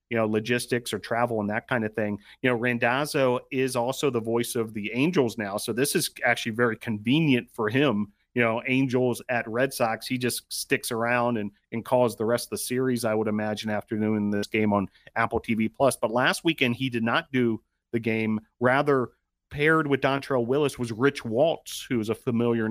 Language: English